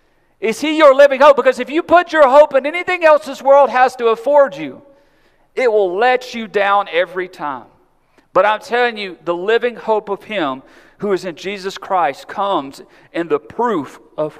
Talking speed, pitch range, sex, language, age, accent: 190 wpm, 170-240 Hz, male, English, 40-59, American